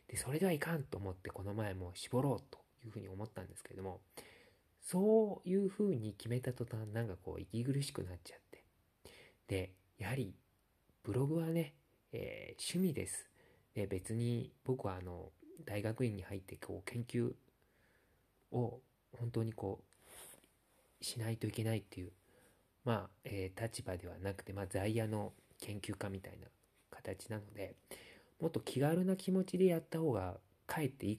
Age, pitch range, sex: 40-59, 95-130 Hz, male